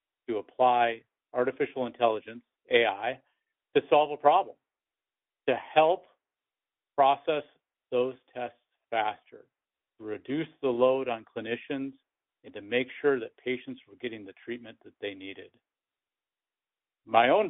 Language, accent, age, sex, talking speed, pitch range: English, American, 50-69, male, 125 wpm, 120-140 Hz